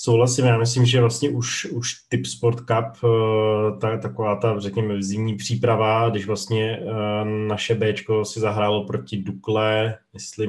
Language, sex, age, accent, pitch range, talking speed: Czech, male, 20-39, native, 105-115 Hz, 145 wpm